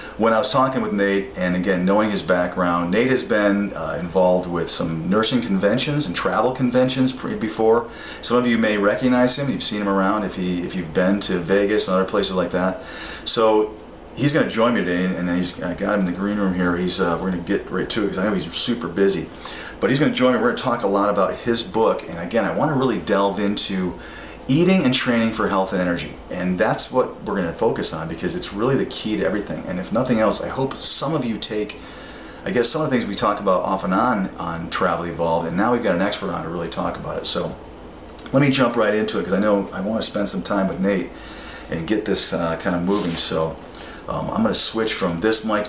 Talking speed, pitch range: 245 wpm, 90-110 Hz